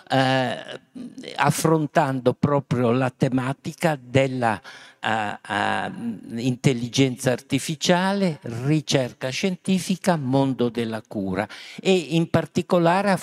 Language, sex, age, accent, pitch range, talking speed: Italian, male, 50-69, native, 120-155 Hz, 75 wpm